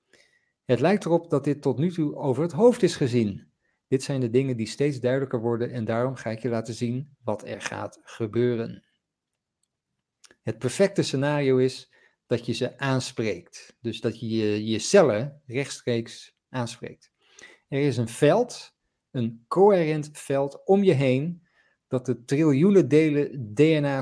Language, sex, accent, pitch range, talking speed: English, male, Dutch, 120-155 Hz, 155 wpm